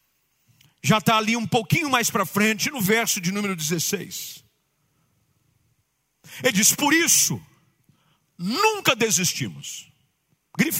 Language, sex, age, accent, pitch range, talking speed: Portuguese, male, 50-69, Brazilian, 150-225 Hz, 110 wpm